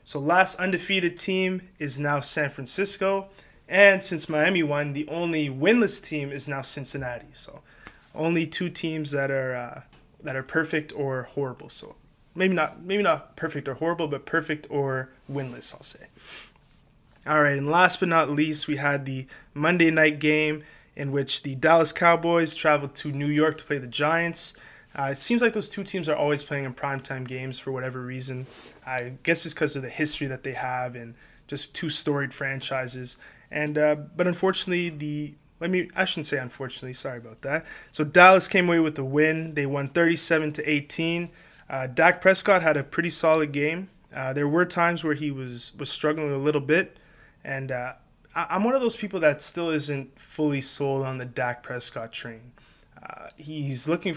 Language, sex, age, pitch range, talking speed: English, male, 20-39, 135-170 Hz, 185 wpm